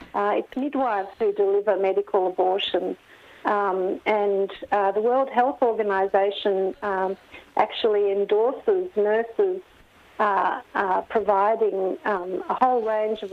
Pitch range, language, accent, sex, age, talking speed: 200-265 Hz, English, Australian, female, 50-69, 115 wpm